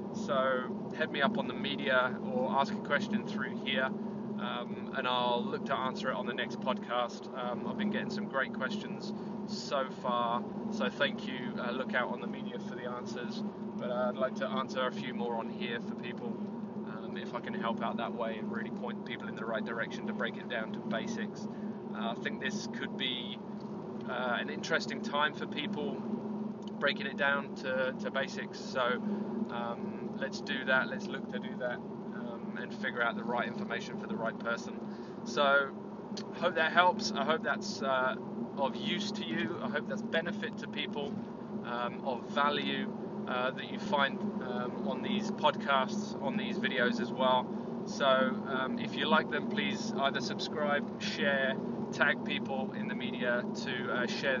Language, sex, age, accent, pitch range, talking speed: English, male, 20-39, British, 200-215 Hz, 190 wpm